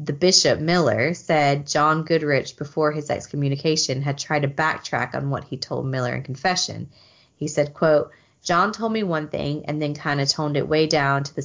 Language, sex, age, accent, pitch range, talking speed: English, female, 30-49, American, 135-165 Hz, 200 wpm